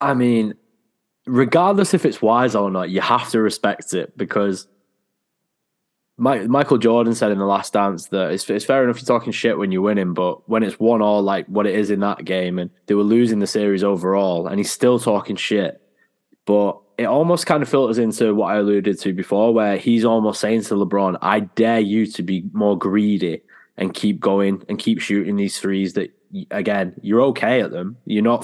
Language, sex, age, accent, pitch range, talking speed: English, male, 10-29, British, 95-115 Hz, 205 wpm